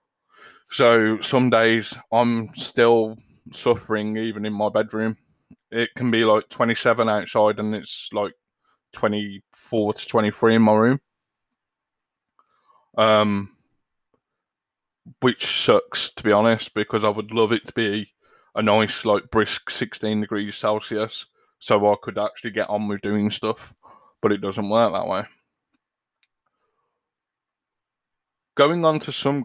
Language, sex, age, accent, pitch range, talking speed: English, male, 20-39, British, 105-115 Hz, 130 wpm